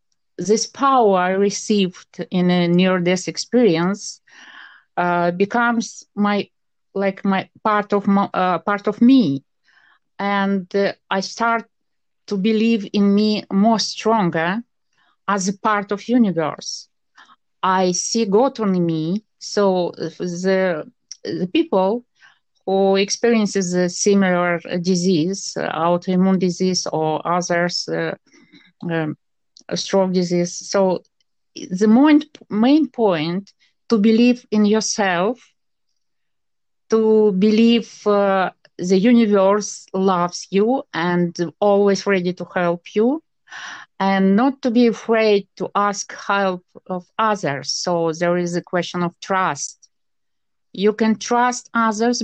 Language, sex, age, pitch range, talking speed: English, female, 50-69, 175-220 Hz, 120 wpm